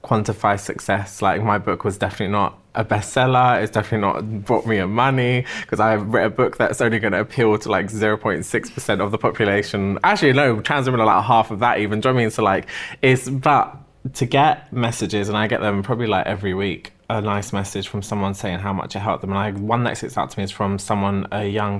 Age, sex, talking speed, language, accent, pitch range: 20-39, male, 240 wpm, English, British, 95-110 Hz